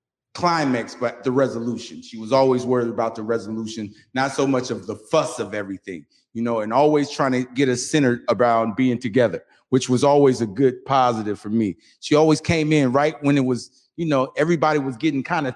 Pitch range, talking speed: 130-180 Hz, 210 wpm